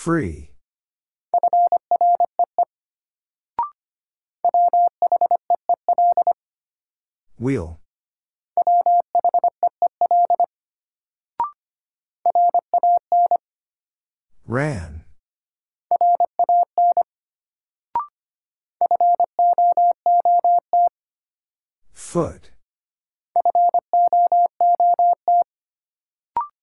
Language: English